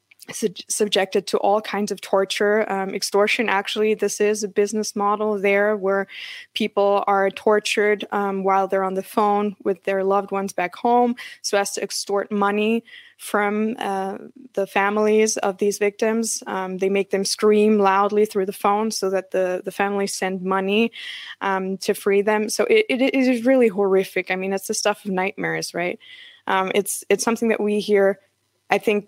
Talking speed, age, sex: 180 wpm, 20-39, female